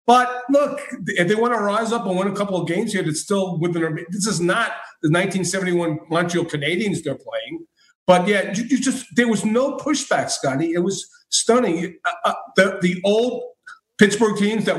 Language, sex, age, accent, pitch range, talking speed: English, male, 40-59, American, 170-210 Hz, 200 wpm